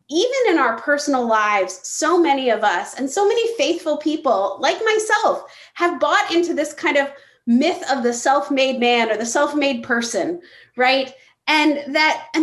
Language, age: English, 30-49